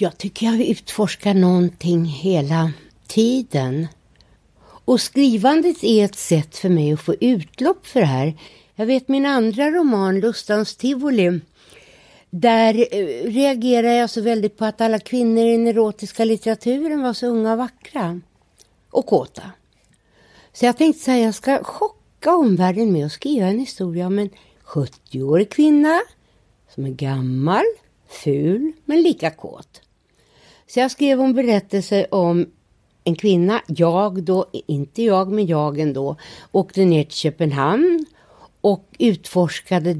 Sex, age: female, 60-79